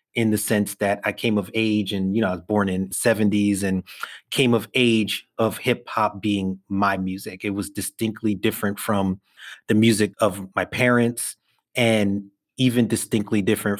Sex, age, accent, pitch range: male, 30-49, American, 100-115 Hz